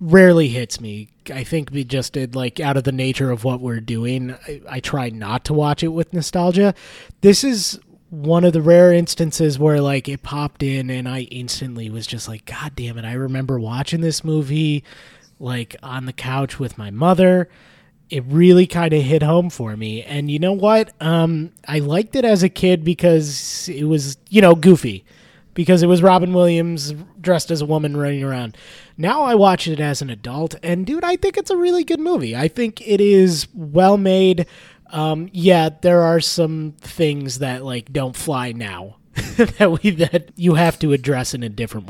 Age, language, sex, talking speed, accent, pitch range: 20-39, English, male, 195 wpm, American, 130-175 Hz